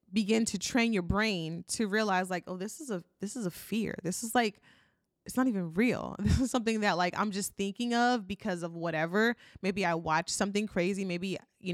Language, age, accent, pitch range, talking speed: English, 20-39, American, 190-235 Hz, 215 wpm